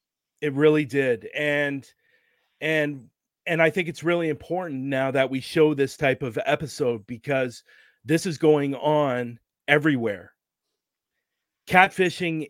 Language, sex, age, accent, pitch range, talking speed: English, male, 40-59, American, 135-160 Hz, 125 wpm